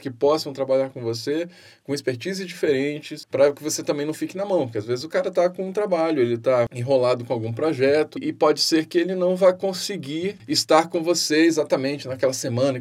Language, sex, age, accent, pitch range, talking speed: Portuguese, male, 10-29, Brazilian, 135-185 Hz, 210 wpm